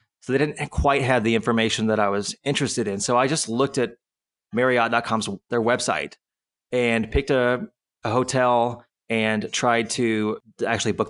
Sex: male